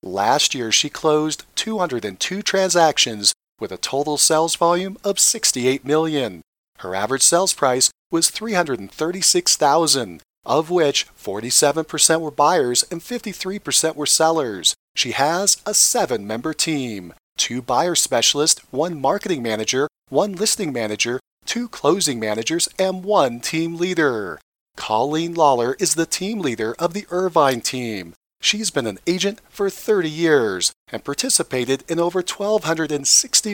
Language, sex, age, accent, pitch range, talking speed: English, male, 40-59, American, 130-185 Hz, 130 wpm